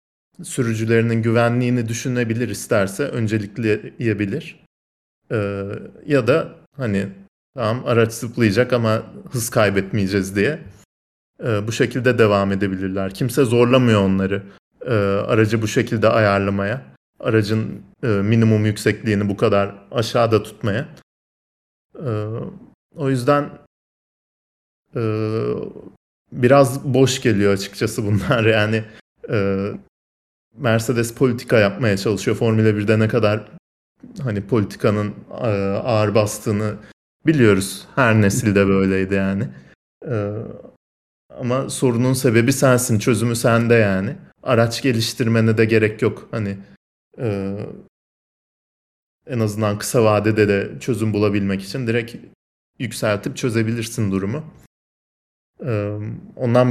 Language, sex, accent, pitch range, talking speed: Turkish, male, native, 100-120 Hz, 95 wpm